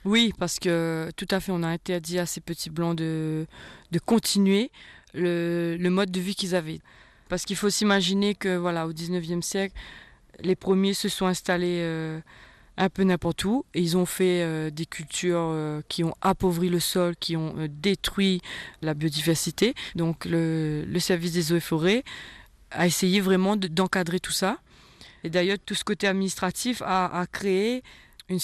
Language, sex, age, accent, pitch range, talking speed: French, female, 20-39, French, 160-190 Hz, 180 wpm